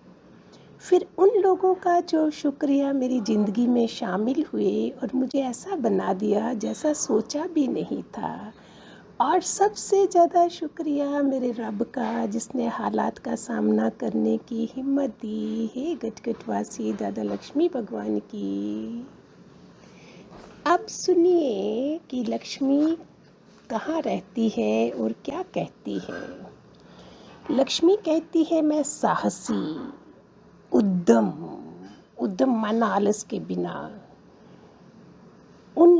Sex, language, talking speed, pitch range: female, Hindi, 110 wpm, 190-295 Hz